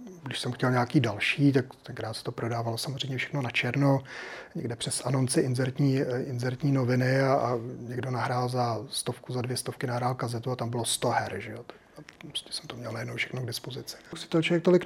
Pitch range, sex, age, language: 120-145 Hz, male, 30-49, Czech